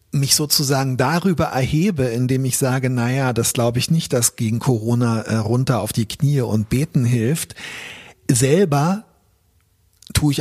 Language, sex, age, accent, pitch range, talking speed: German, male, 40-59, German, 115-150 Hz, 145 wpm